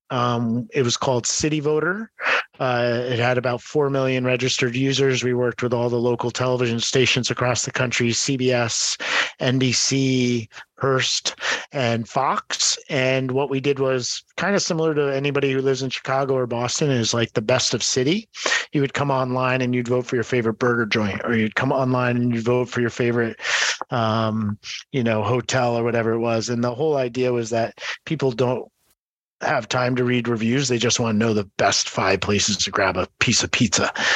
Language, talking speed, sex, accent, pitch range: English, 195 wpm, male, American, 115-130 Hz